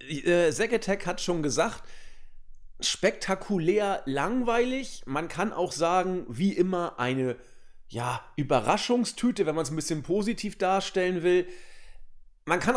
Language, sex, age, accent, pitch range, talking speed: German, male, 40-59, German, 135-190 Hz, 115 wpm